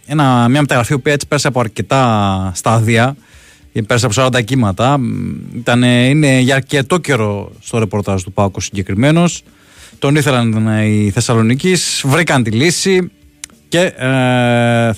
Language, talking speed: Greek, 130 wpm